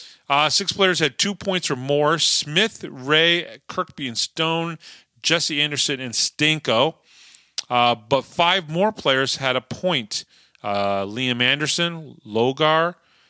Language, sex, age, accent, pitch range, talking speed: English, male, 40-59, American, 120-165 Hz, 130 wpm